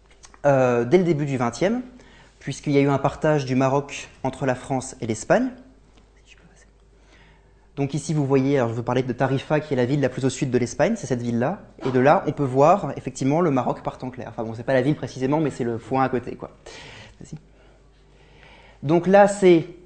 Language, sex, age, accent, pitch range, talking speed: French, male, 20-39, French, 125-155 Hz, 215 wpm